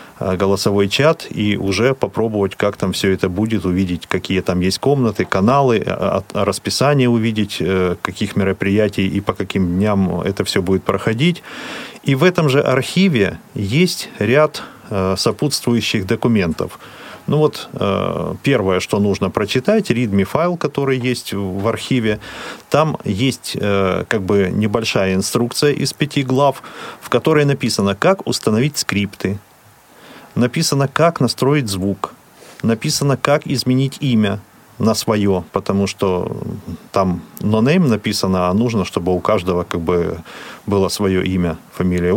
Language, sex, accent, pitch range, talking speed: Russian, male, native, 95-135 Hz, 125 wpm